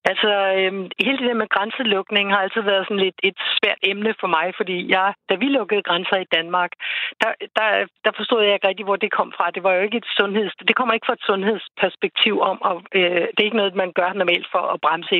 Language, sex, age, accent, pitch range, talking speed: Danish, female, 60-79, native, 180-210 Hz, 240 wpm